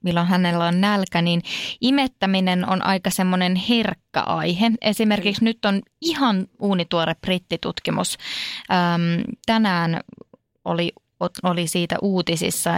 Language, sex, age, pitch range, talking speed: Finnish, female, 20-39, 170-205 Hz, 105 wpm